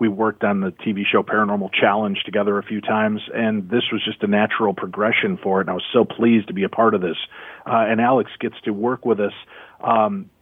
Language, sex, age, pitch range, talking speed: English, male, 40-59, 105-120 Hz, 235 wpm